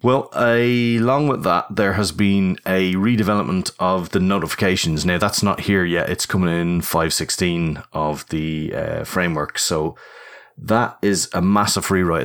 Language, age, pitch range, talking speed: English, 30-49, 85-100 Hz, 155 wpm